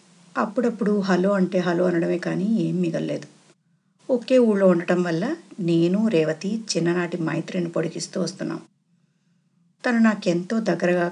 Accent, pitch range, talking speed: native, 175-200 Hz, 115 wpm